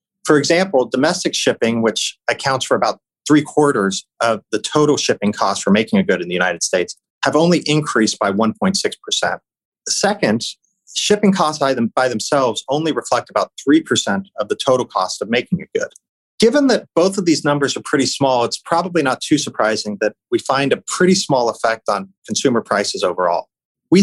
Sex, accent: male, American